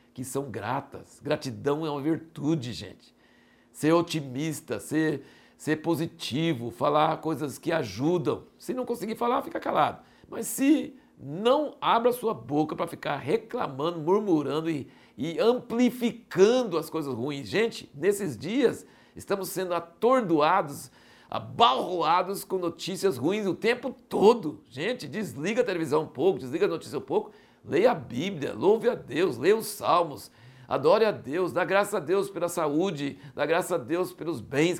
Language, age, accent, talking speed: Portuguese, 60-79, Brazilian, 150 wpm